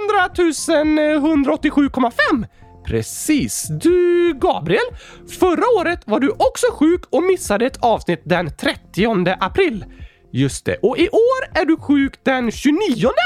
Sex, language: male, Swedish